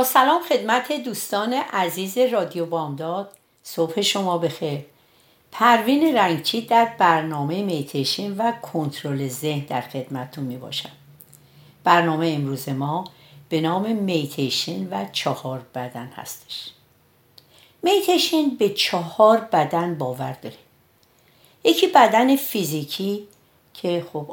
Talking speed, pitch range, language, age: 105 wpm, 140-205 Hz, Persian, 60-79